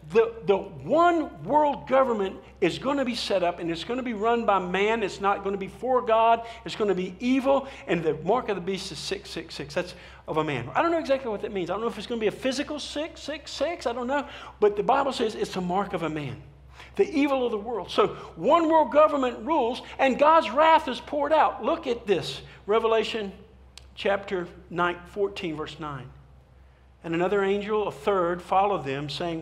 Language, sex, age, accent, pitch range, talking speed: English, male, 50-69, American, 180-270 Hz, 220 wpm